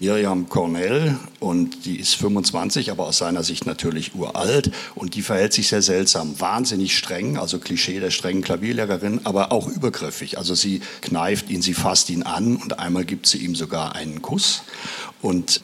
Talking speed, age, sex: 175 wpm, 60-79, male